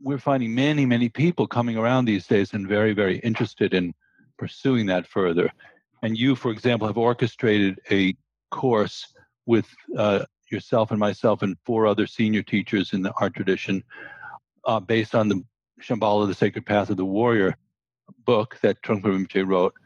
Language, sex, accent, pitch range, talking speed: English, male, American, 105-120 Hz, 165 wpm